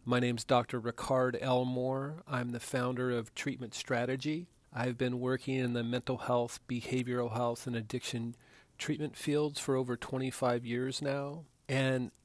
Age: 40-59